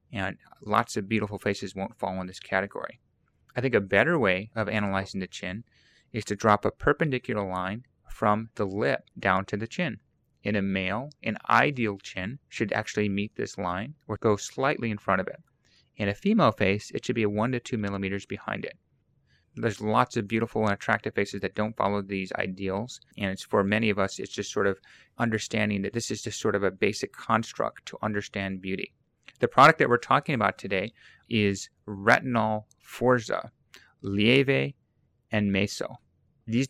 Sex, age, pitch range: male, 30-49, 100-115 Hz